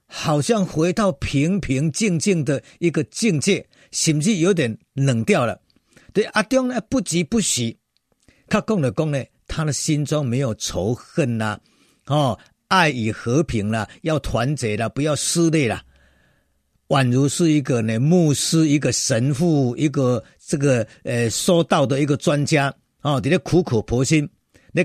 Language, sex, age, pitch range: Chinese, male, 50-69, 125-175 Hz